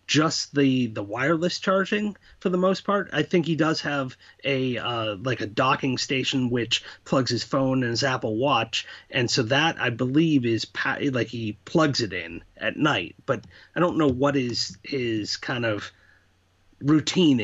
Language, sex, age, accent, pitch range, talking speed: English, male, 30-49, American, 115-150 Hz, 175 wpm